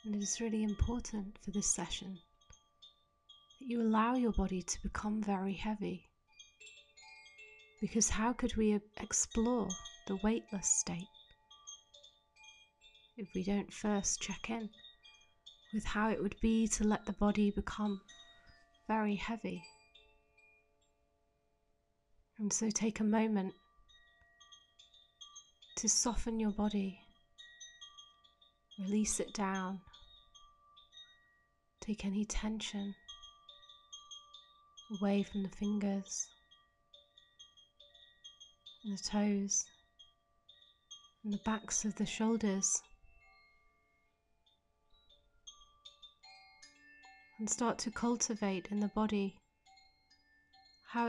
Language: English